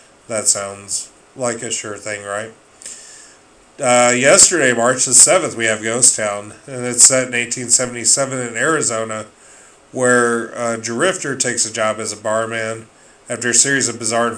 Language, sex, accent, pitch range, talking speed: English, male, American, 110-125 Hz, 165 wpm